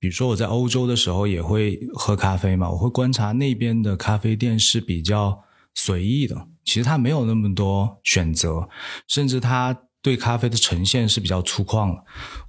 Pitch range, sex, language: 100-130 Hz, male, Chinese